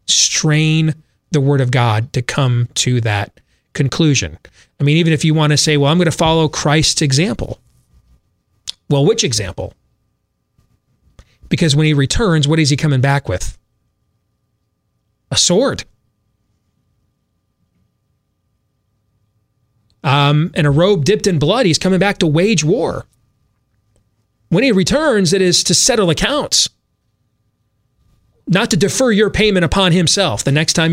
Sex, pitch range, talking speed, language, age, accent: male, 110-165 Hz, 140 wpm, English, 30-49, American